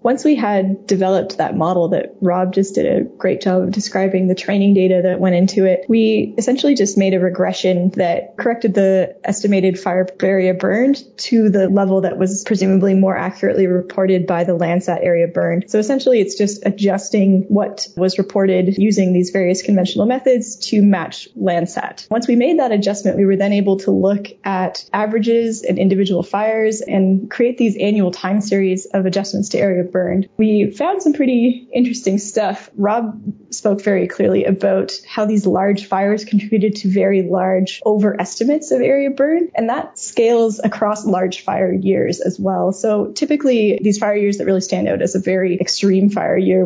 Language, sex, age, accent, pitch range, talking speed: English, female, 10-29, American, 185-215 Hz, 180 wpm